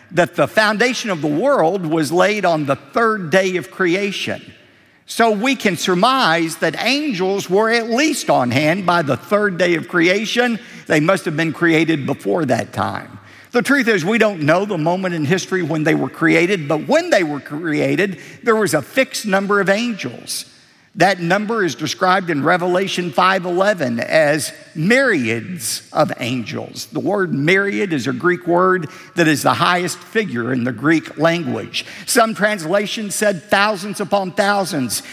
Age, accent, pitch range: 50-69, American, 160-215 Hz